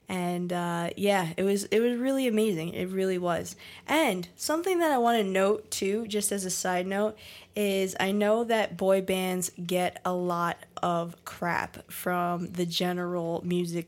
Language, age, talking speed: English, 20-39, 175 wpm